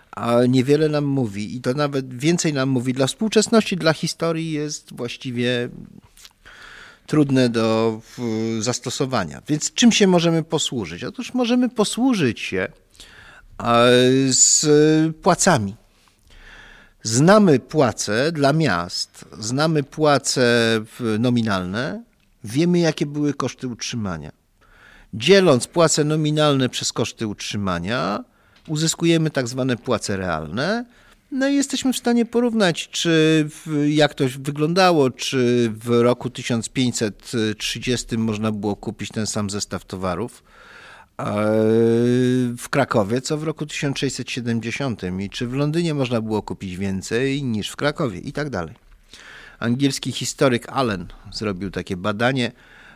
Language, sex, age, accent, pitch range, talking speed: Polish, male, 50-69, native, 115-155 Hz, 115 wpm